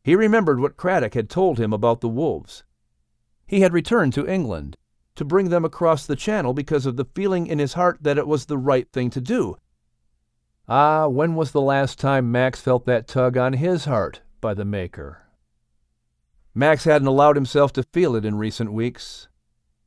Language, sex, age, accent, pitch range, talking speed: English, male, 50-69, American, 115-170 Hz, 185 wpm